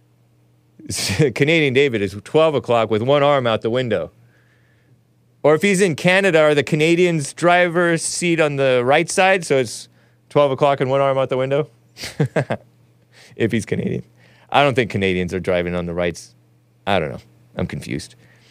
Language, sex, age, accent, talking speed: English, male, 30-49, American, 170 wpm